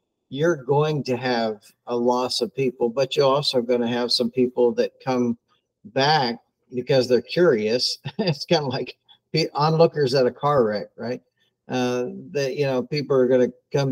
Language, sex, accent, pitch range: English, male, American, 120-150 Hz